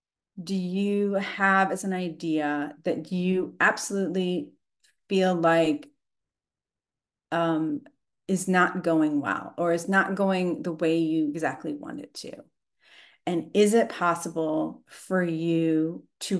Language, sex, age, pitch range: English, female, 40-59, 160-195 Hz